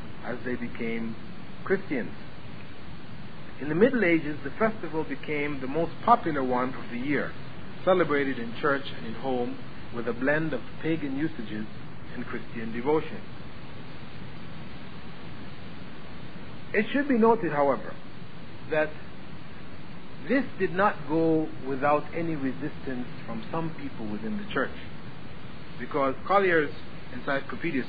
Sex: male